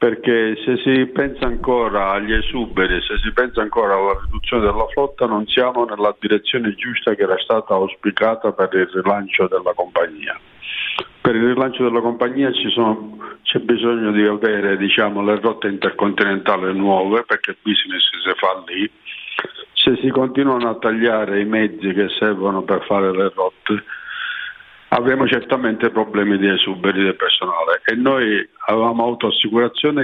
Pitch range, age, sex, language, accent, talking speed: 100-120 Hz, 50-69, male, Italian, native, 145 wpm